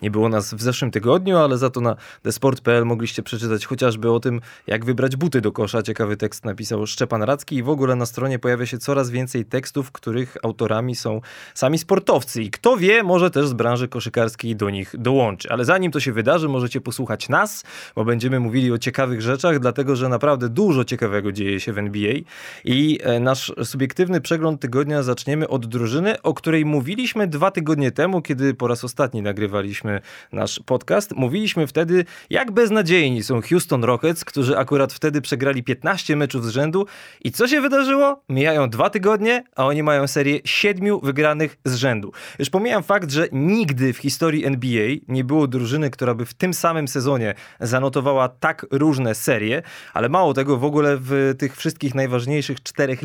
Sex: male